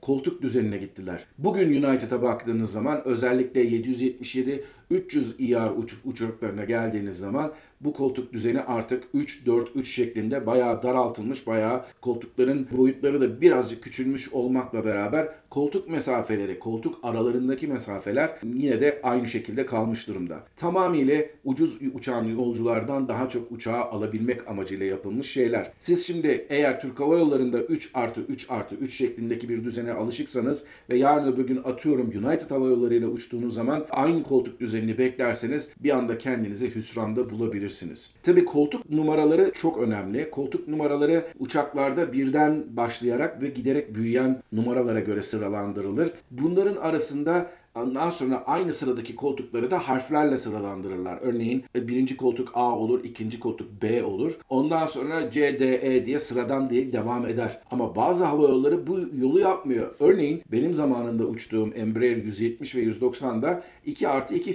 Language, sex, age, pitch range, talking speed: Turkish, male, 50-69, 115-145 Hz, 135 wpm